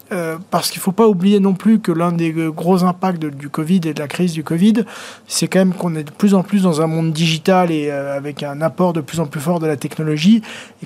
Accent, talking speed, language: French, 260 wpm, French